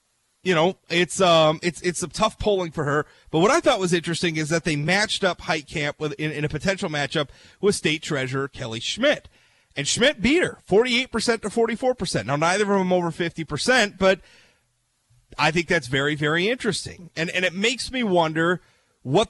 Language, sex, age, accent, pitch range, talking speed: English, male, 30-49, American, 140-185 Hz, 190 wpm